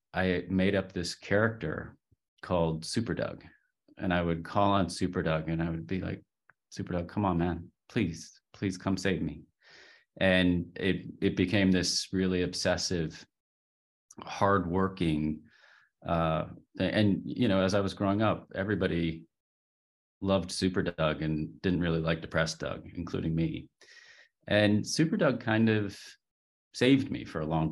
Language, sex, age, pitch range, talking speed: English, male, 30-49, 85-95 Hz, 150 wpm